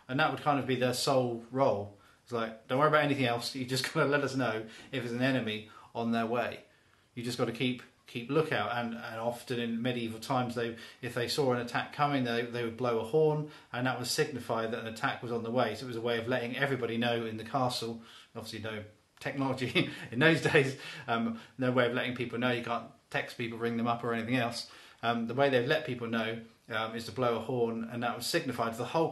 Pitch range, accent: 115-130 Hz, British